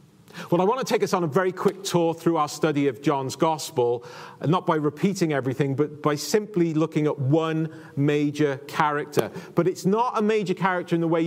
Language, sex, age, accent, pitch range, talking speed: English, male, 40-59, British, 155-195 Hz, 210 wpm